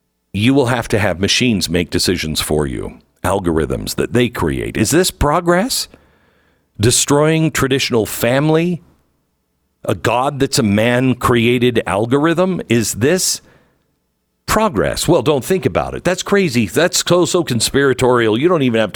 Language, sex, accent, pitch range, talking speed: English, male, American, 100-140 Hz, 145 wpm